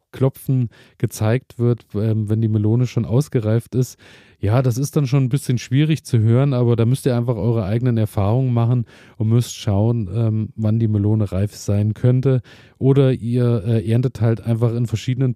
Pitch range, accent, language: 110-130 Hz, German, German